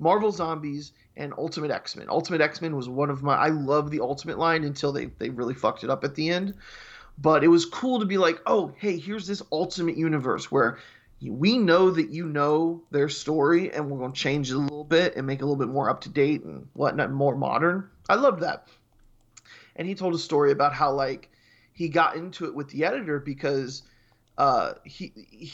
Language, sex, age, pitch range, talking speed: English, male, 20-39, 140-170 Hz, 210 wpm